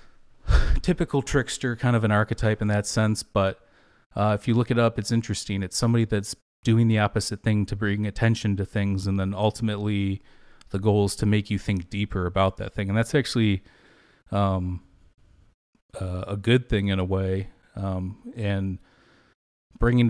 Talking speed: 175 wpm